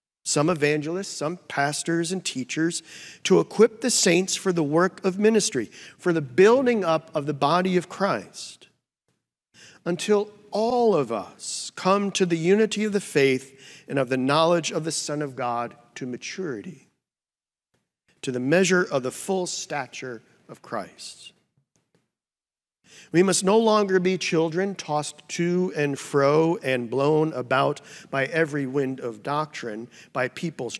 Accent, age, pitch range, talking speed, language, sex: American, 50-69, 145-195 Hz, 145 wpm, English, male